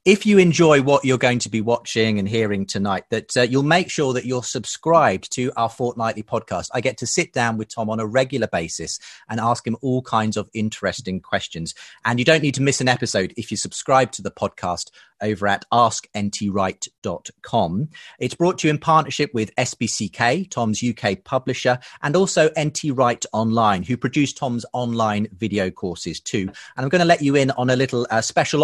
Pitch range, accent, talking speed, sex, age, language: 110-140 Hz, British, 200 wpm, male, 30-49, English